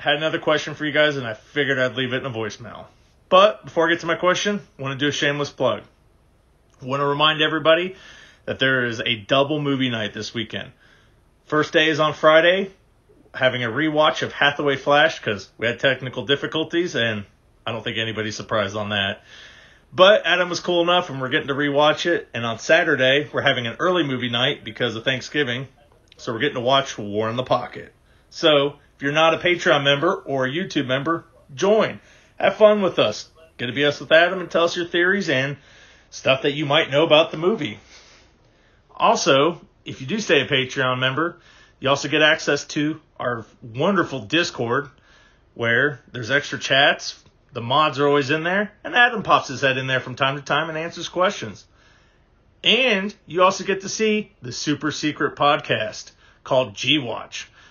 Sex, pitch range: male, 130-165 Hz